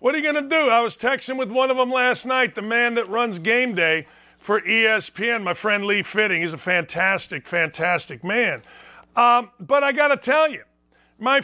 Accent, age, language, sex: American, 40-59, English, male